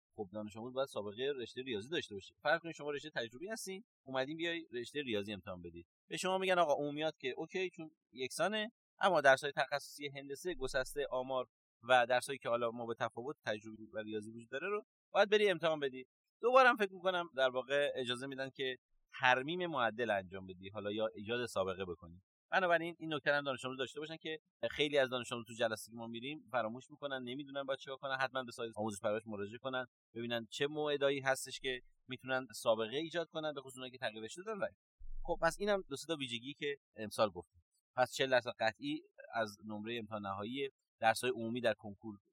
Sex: male